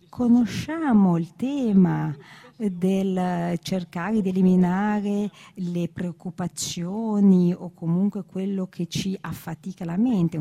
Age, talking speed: 40-59, 100 wpm